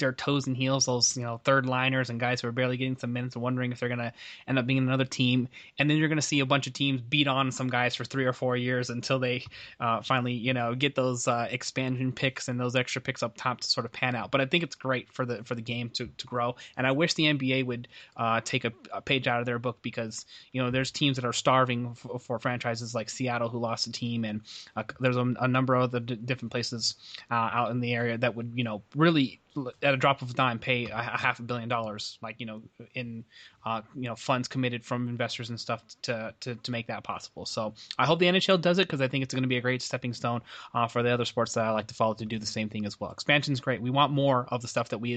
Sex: male